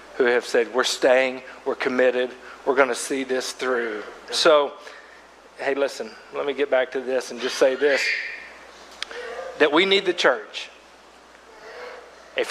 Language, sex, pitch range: English, male, 160-200 Hz